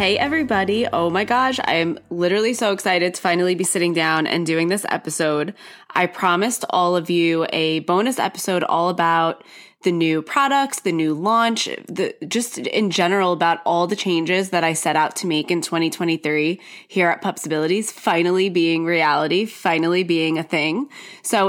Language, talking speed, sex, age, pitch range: English, 175 wpm, female, 20-39, 165-205 Hz